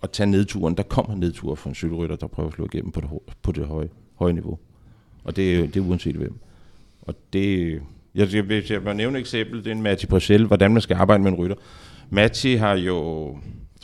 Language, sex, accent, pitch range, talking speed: Danish, male, native, 85-105 Hz, 225 wpm